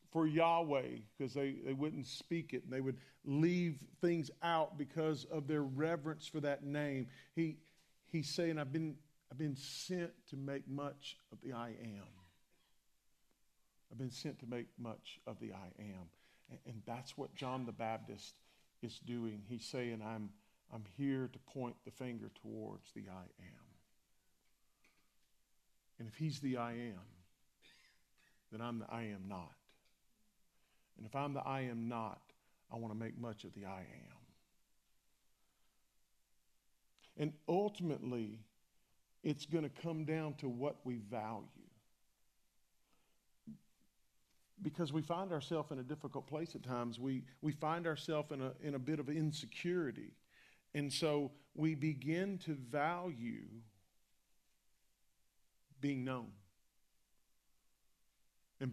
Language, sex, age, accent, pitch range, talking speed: English, male, 40-59, American, 115-155 Hz, 140 wpm